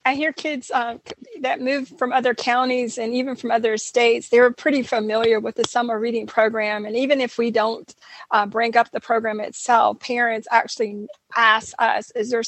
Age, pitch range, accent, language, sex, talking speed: 40-59, 200-230 Hz, American, English, female, 190 wpm